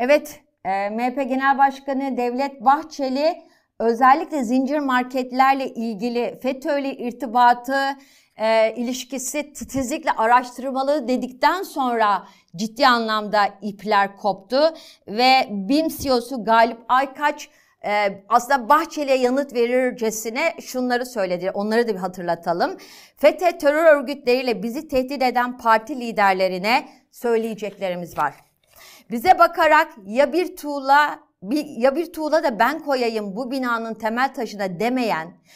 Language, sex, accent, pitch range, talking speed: Turkish, female, native, 200-270 Hz, 110 wpm